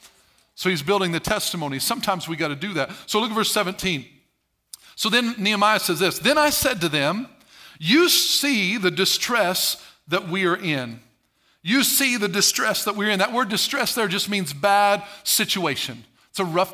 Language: English